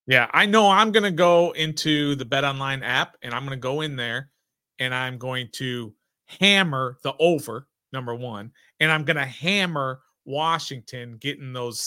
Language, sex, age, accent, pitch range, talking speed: English, male, 40-59, American, 125-155 Hz, 180 wpm